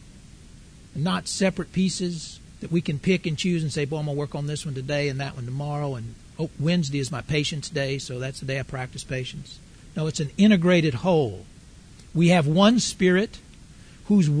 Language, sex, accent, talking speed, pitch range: English, male, American, 200 wpm, 140-185 Hz